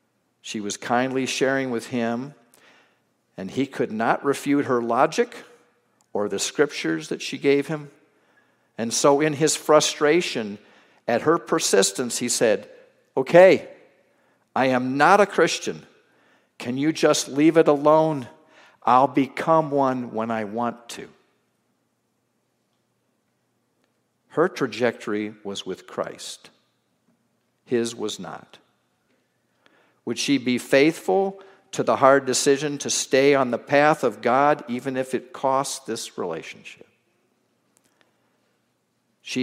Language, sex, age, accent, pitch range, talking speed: English, male, 50-69, American, 115-145 Hz, 120 wpm